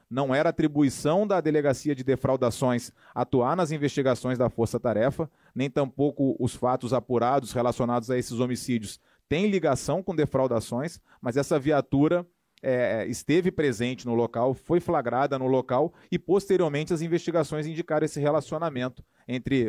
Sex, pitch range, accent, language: male, 125-155 Hz, Brazilian, Portuguese